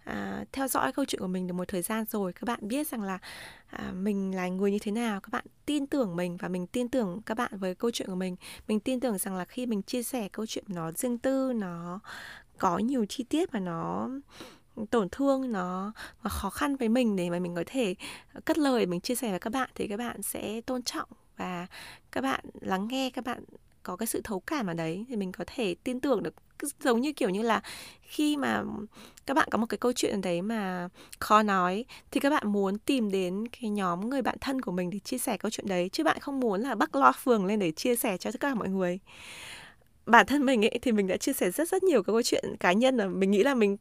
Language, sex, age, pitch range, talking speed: Vietnamese, female, 20-39, 190-255 Hz, 255 wpm